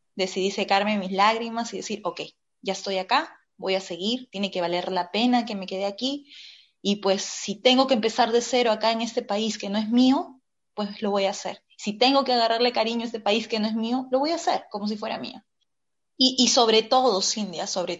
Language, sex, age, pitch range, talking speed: Spanish, female, 20-39, 200-240 Hz, 230 wpm